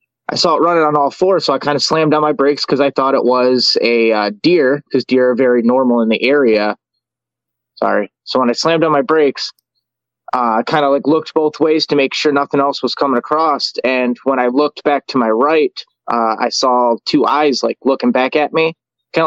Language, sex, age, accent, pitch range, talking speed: English, male, 20-39, American, 125-155 Hz, 230 wpm